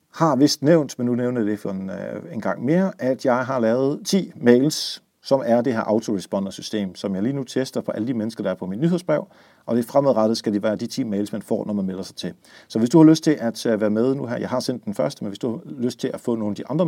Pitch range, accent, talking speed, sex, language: 100-135 Hz, native, 290 wpm, male, Danish